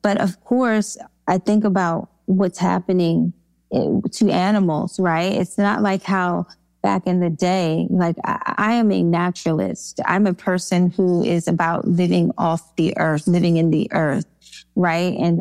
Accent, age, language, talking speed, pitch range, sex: American, 20-39, English, 160 wpm, 170-205 Hz, female